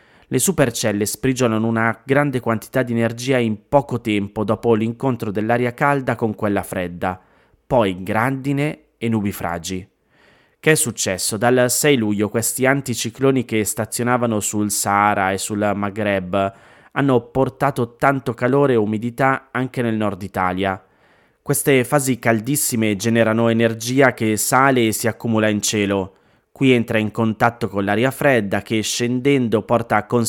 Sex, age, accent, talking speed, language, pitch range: male, 20-39, native, 140 wpm, Italian, 105-130 Hz